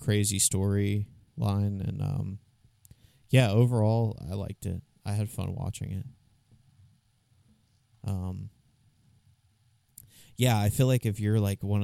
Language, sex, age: English, male, 20-39